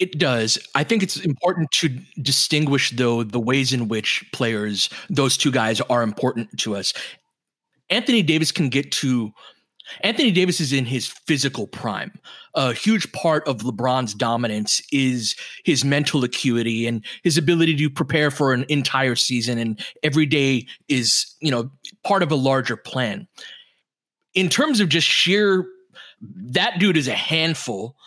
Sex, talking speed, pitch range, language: male, 155 wpm, 130-175 Hz, English